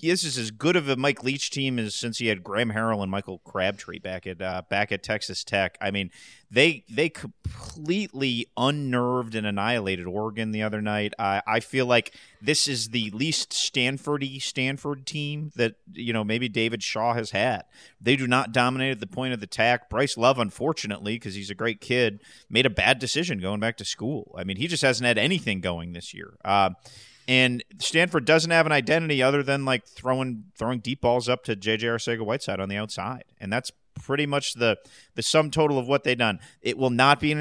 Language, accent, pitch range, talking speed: English, American, 110-140 Hz, 215 wpm